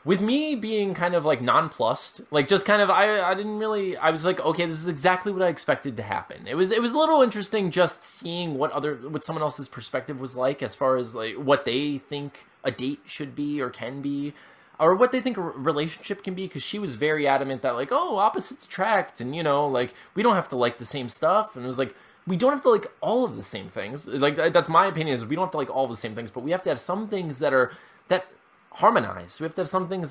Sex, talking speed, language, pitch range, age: male, 265 wpm, English, 135-190 Hz, 20-39